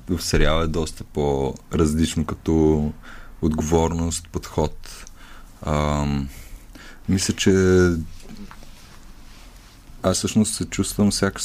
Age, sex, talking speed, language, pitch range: 30-49, male, 85 wpm, Bulgarian, 80-95 Hz